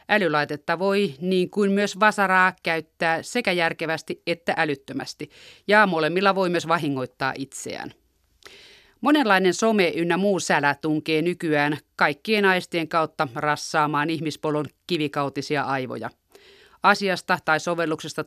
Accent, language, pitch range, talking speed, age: native, Finnish, 155-185 Hz, 110 wpm, 30-49